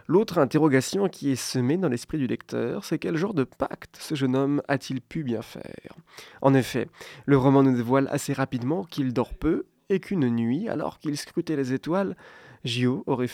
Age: 20-39